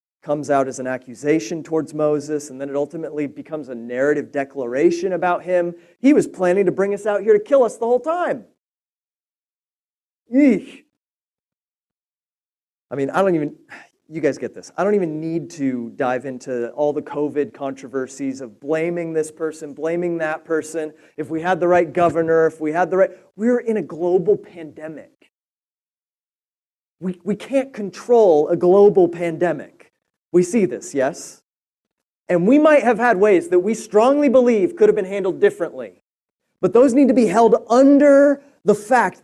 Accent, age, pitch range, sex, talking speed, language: American, 30-49, 155-245 Hz, male, 170 wpm, English